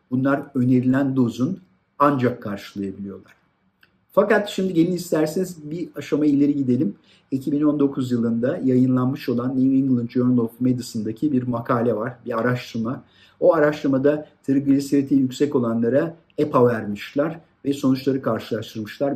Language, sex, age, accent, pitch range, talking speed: Turkish, male, 50-69, native, 115-150 Hz, 115 wpm